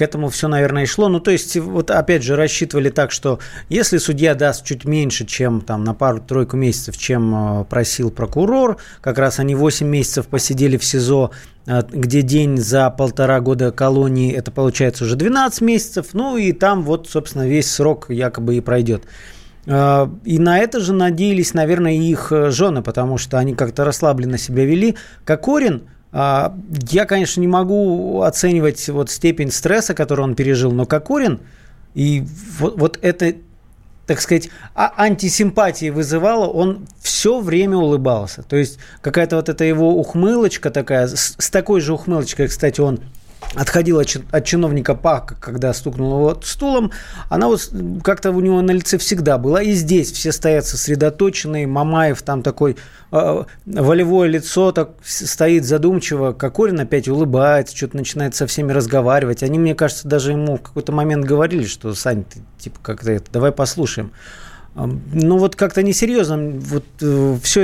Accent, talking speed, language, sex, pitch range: native, 155 wpm, Russian, male, 130-170 Hz